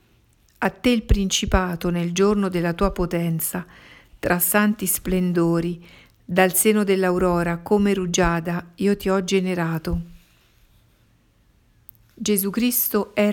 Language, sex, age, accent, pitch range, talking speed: Italian, female, 50-69, native, 175-205 Hz, 110 wpm